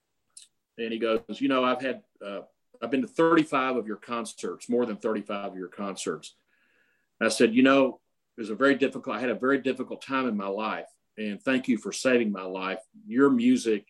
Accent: American